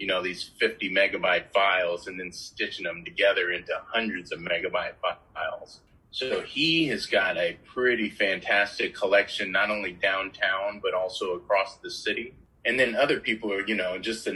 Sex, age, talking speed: male, 30-49, 170 wpm